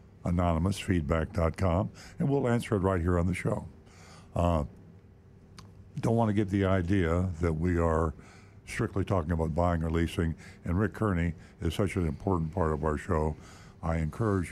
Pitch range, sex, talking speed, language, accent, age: 85-100 Hz, male, 160 wpm, English, American, 60-79